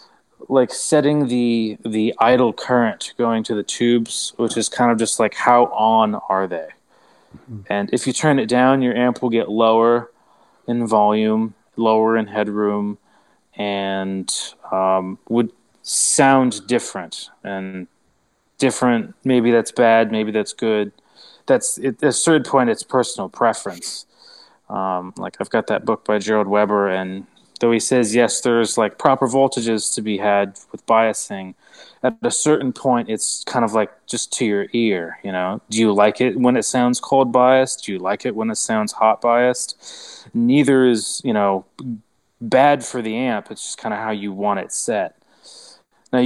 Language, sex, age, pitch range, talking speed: English, male, 20-39, 105-125 Hz, 170 wpm